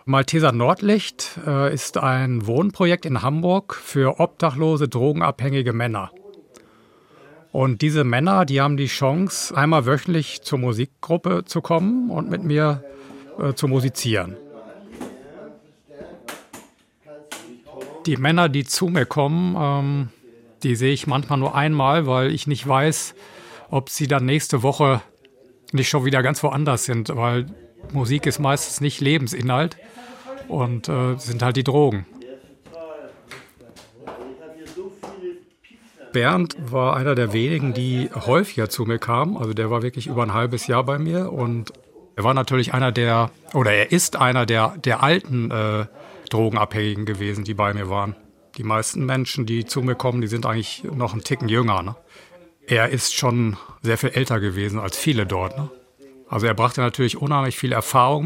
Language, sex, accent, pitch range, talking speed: German, male, German, 120-155 Hz, 150 wpm